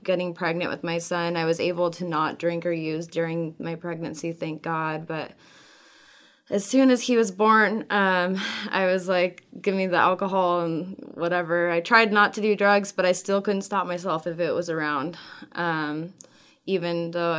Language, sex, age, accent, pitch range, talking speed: English, female, 20-39, American, 170-185 Hz, 185 wpm